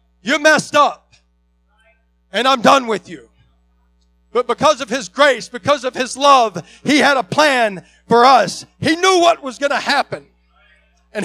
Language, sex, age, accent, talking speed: English, male, 40-59, American, 165 wpm